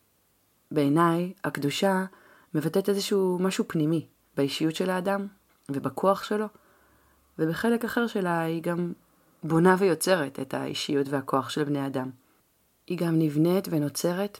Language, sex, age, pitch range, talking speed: Hebrew, female, 30-49, 140-185 Hz, 115 wpm